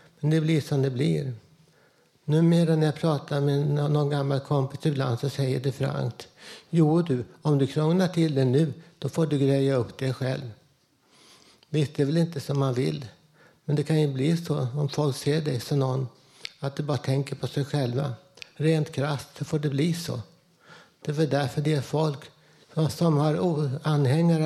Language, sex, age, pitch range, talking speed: Swedish, male, 60-79, 135-155 Hz, 185 wpm